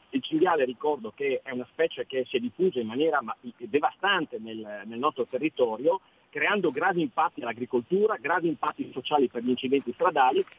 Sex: male